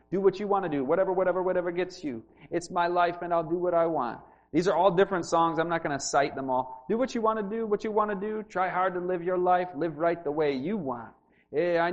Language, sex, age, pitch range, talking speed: English, male, 30-49, 165-230 Hz, 285 wpm